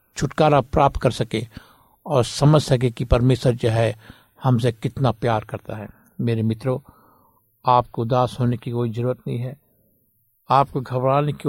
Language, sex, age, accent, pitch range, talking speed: Hindi, male, 60-79, native, 120-140 Hz, 150 wpm